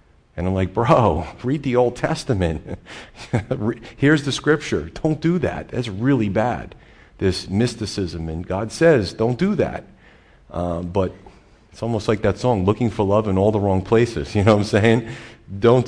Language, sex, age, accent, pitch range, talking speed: English, male, 40-59, American, 90-115 Hz, 175 wpm